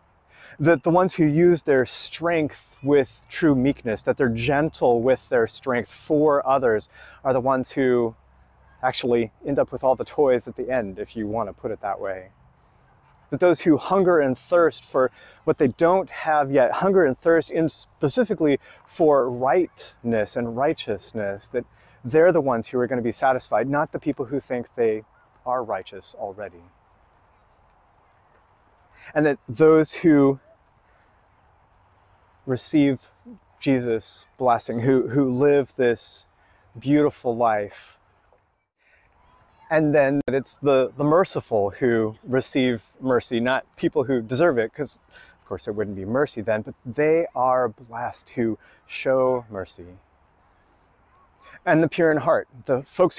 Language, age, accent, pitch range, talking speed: English, 30-49, American, 105-145 Hz, 145 wpm